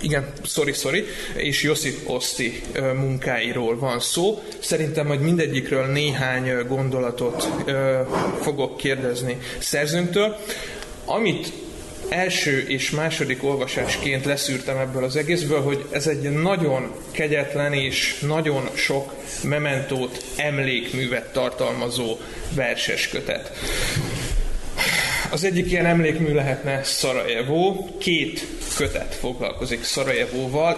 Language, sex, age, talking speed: Hungarian, male, 30-49, 95 wpm